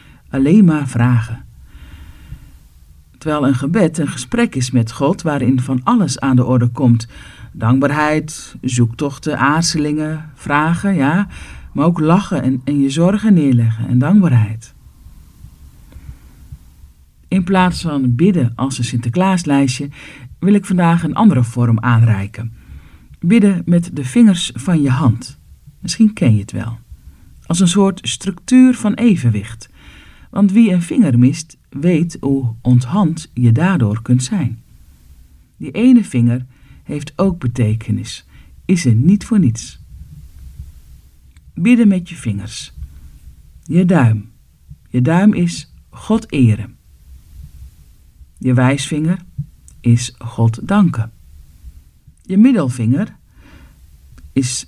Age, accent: 50-69, Dutch